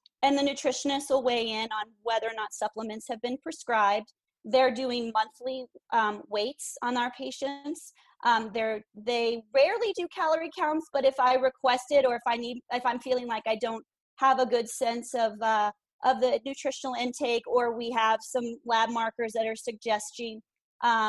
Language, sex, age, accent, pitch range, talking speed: English, female, 30-49, American, 220-260 Hz, 180 wpm